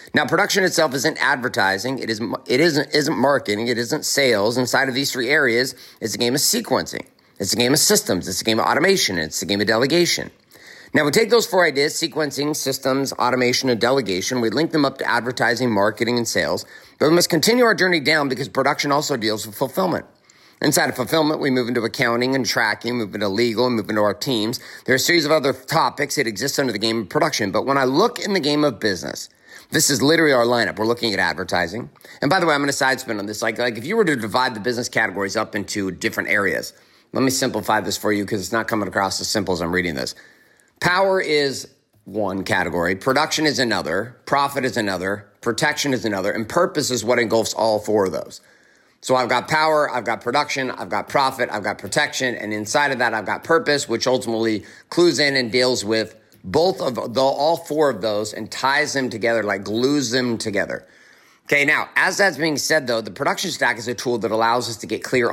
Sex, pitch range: male, 110-145 Hz